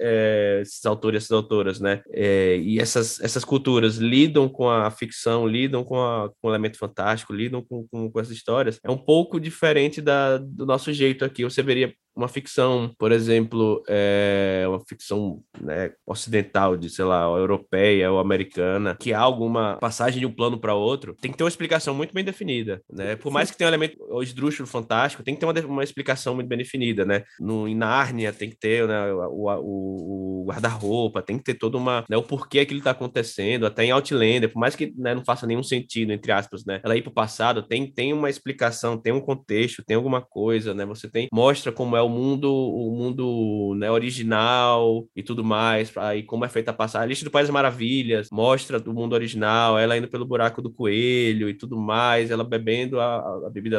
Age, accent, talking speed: 20-39, Brazilian, 205 wpm